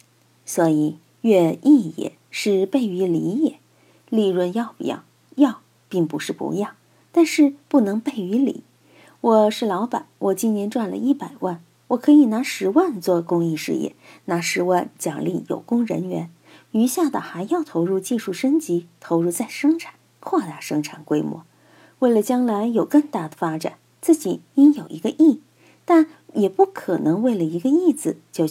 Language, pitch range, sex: Chinese, 175-265 Hz, female